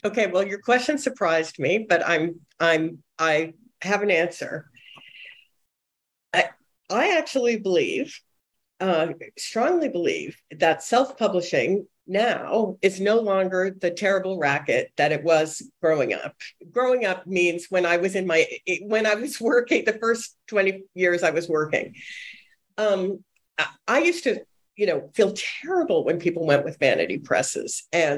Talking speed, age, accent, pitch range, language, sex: 145 wpm, 50-69, American, 170-230 Hz, English, female